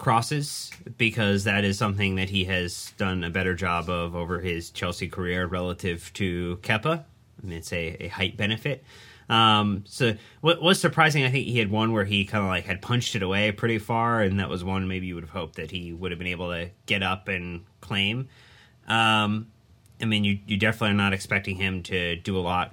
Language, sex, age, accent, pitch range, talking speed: English, male, 30-49, American, 95-115 Hz, 220 wpm